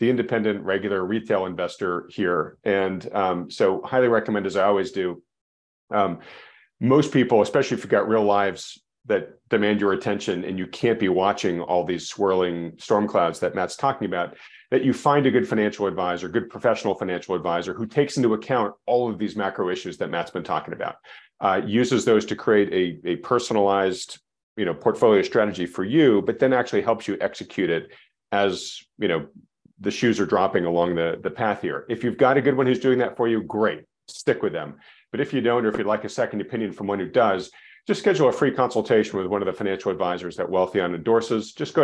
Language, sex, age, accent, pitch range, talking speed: English, male, 40-59, American, 95-125 Hz, 210 wpm